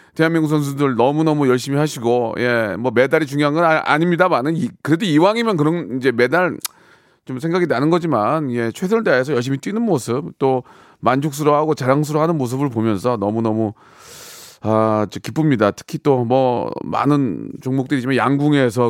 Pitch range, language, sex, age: 115-160 Hz, Korean, male, 40-59